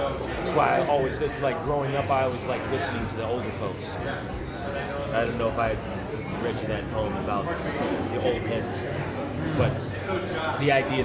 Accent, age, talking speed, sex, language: American, 30-49, 175 wpm, male, English